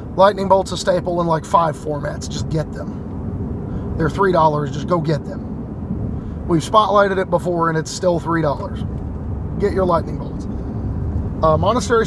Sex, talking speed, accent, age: male, 155 wpm, American, 30-49